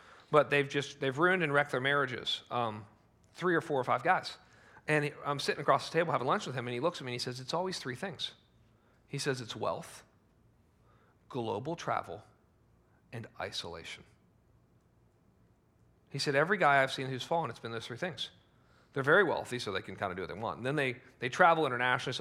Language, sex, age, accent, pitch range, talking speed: English, male, 40-59, American, 120-150 Hz, 205 wpm